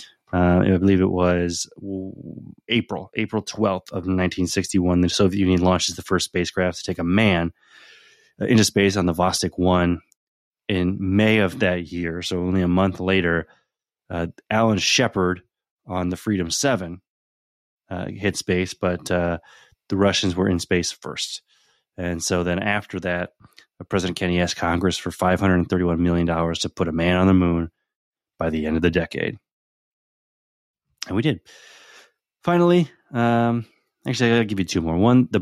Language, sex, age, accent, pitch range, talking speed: English, male, 20-39, American, 90-105 Hz, 160 wpm